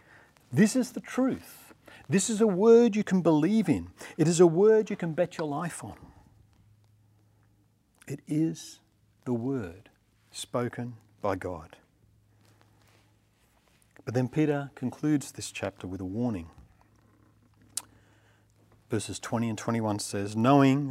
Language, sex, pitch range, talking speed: English, male, 105-150 Hz, 125 wpm